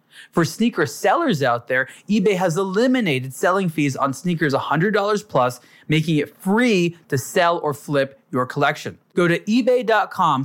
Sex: male